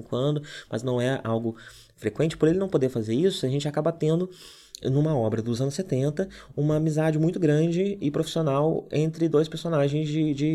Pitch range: 115-155 Hz